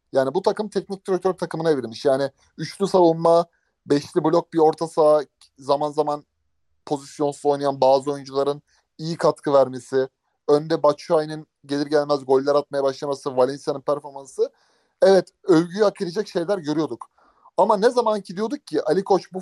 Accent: native